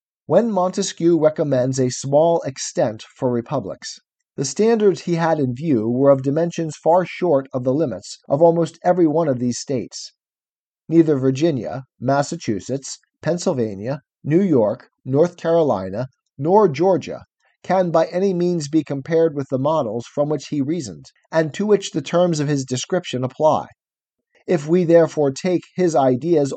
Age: 40-59